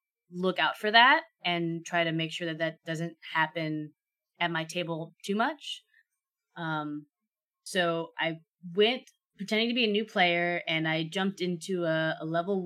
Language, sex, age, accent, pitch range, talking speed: English, female, 20-39, American, 160-190 Hz, 165 wpm